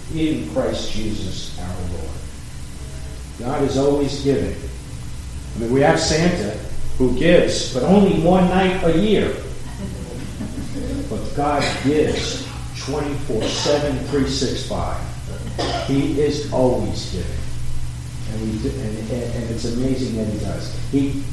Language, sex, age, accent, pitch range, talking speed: English, male, 50-69, American, 105-140 Hz, 125 wpm